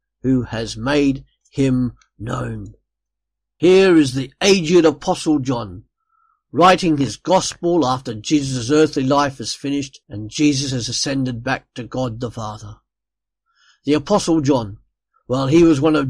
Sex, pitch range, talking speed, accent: male, 125-170 Hz, 140 wpm, British